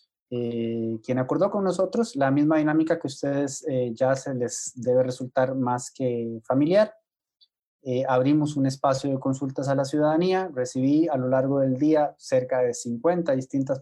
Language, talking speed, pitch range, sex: Spanish, 170 wpm, 125-155 Hz, male